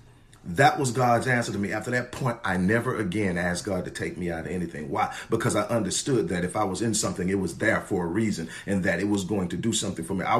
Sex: male